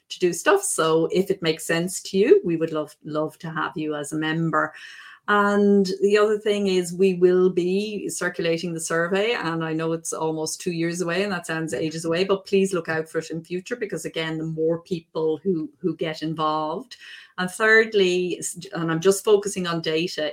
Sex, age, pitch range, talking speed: female, 30-49, 155-190 Hz, 205 wpm